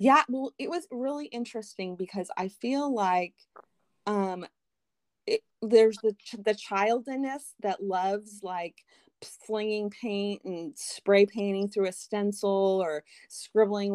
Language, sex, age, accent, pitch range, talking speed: English, female, 30-49, American, 185-225 Hz, 140 wpm